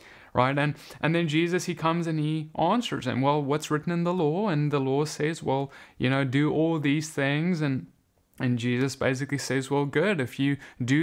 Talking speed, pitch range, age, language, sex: 205 wpm, 125-160 Hz, 20-39, English, male